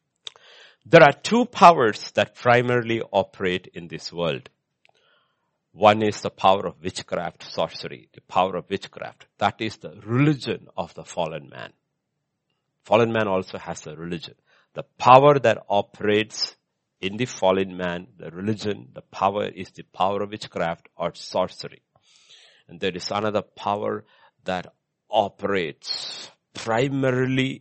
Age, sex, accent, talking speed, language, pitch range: 60-79, male, Indian, 135 wpm, English, 95-150 Hz